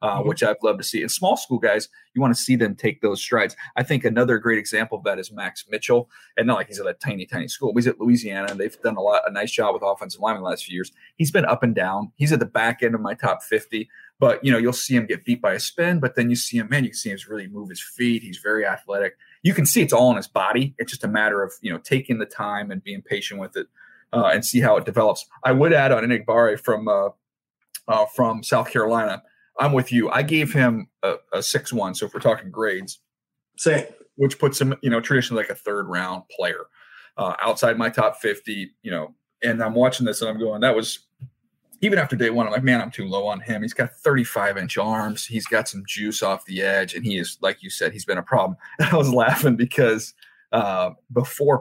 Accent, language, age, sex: American, English, 30-49, male